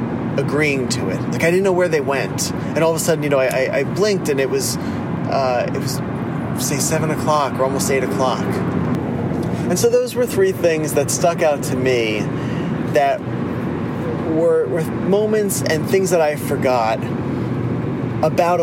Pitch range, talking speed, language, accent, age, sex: 130-165 Hz, 175 wpm, English, American, 30-49, male